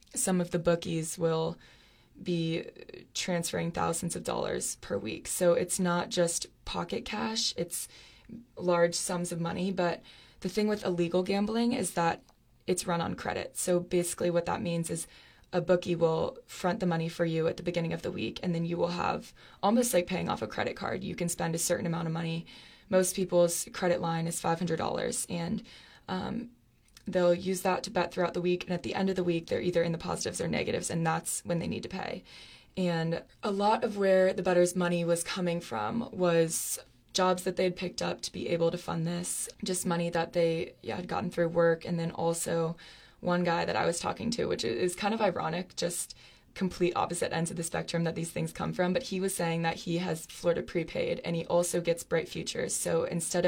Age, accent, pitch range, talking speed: 20-39, American, 170-180 Hz, 210 wpm